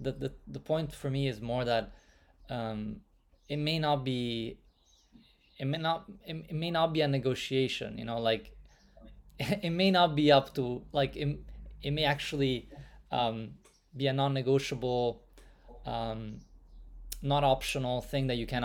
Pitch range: 110-140 Hz